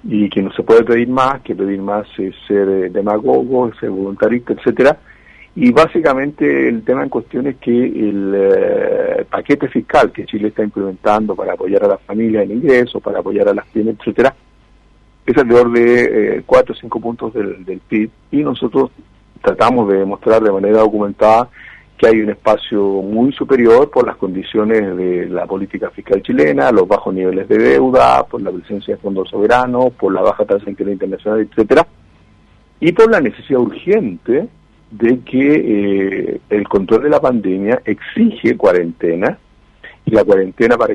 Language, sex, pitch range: Spanish, male, 100-120 Hz